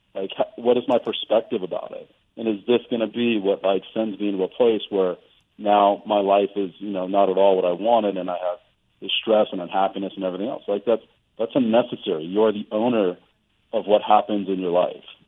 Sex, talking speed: male, 220 wpm